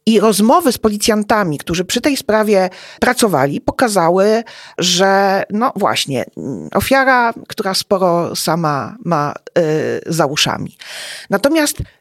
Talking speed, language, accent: 105 wpm, Polish, native